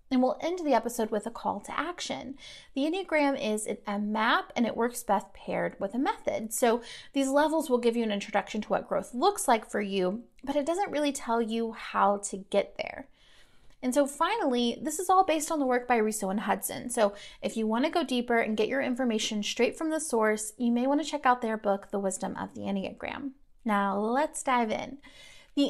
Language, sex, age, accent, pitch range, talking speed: English, female, 30-49, American, 215-280 Hz, 220 wpm